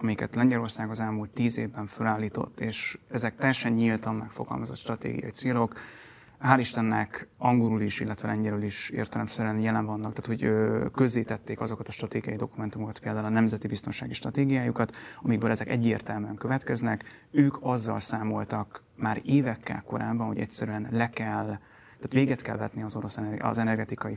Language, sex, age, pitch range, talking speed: Hungarian, male, 30-49, 110-120 Hz, 140 wpm